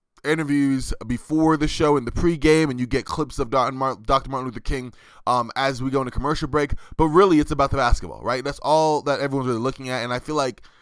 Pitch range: 120-145 Hz